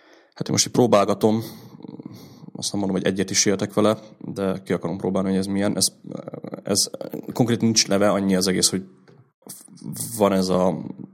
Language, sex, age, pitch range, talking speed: Hungarian, male, 30-49, 90-100 Hz, 165 wpm